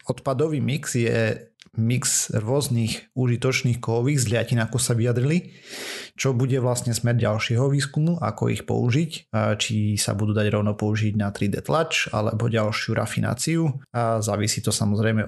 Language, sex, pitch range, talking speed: Slovak, male, 105-125 Hz, 140 wpm